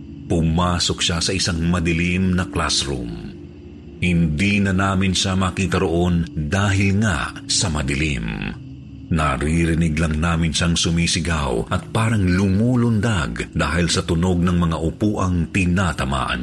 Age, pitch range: 50-69, 75-100 Hz